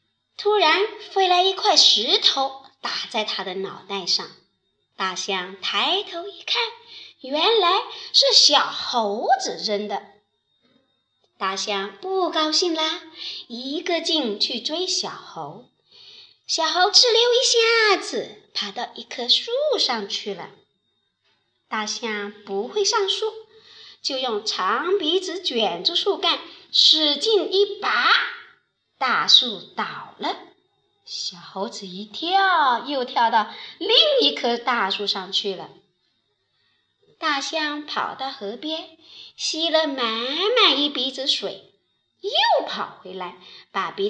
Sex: male